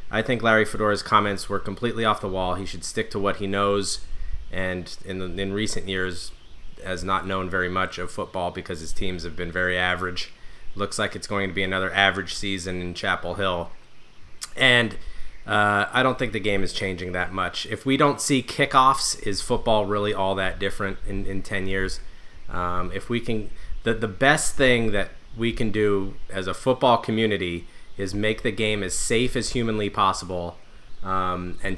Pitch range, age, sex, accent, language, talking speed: 95-110 Hz, 30-49, male, American, English, 195 wpm